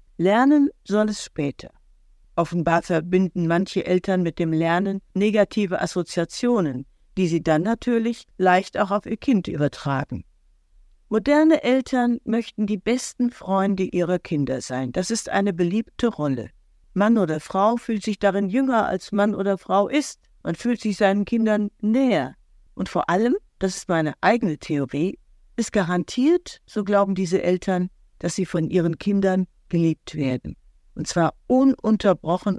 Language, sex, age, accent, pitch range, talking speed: German, female, 50-69, German, 165-225 Hz, 145 wpm